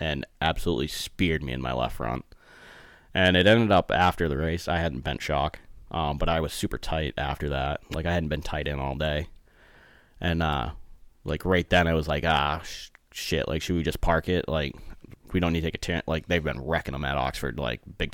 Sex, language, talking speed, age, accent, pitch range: male, English, 225 wpm, 30-49, American, 75-85 Hz